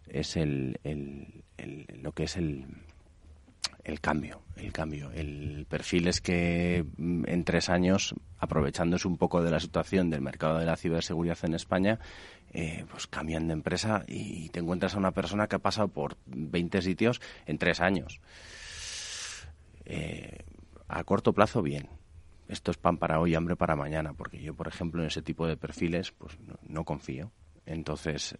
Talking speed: 170 wpm